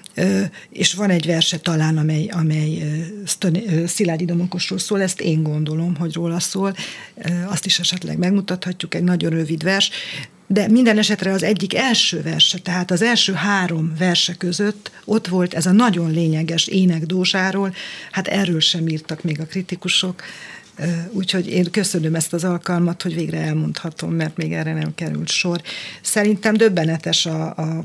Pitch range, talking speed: 165-190 Hz, 150 wpm